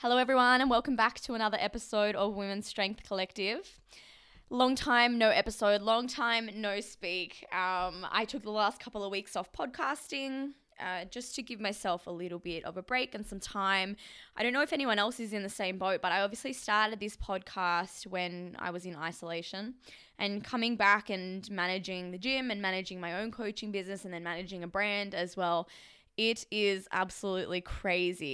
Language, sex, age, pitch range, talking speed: English, female, 20-39, 180-220 Hz, 190 wpm